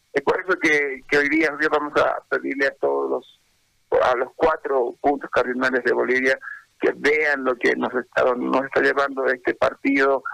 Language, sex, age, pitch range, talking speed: Spanish, male, 50-69, 130-150 Hz, 175 wpm